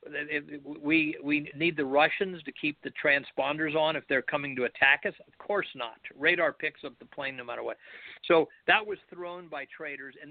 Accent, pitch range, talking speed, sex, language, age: American, 140-180 Hz, 200 wpm, male, English, 50-69